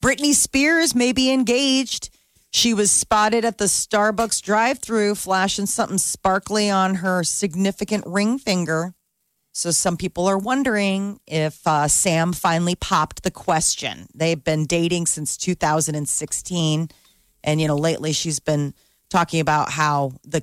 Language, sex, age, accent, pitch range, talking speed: English, female, 40-59, American, 150-205 Hz, 140 wpm